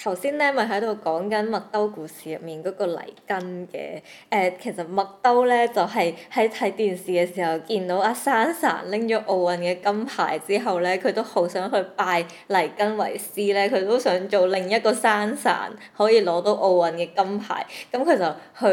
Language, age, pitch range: Chinese, 20-39, 170-215 Hz